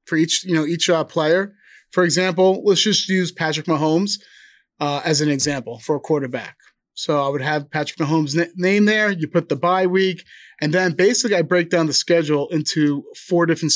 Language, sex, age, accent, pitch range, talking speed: English, male, 30-49, American, 150-180 Hz, 195 wpm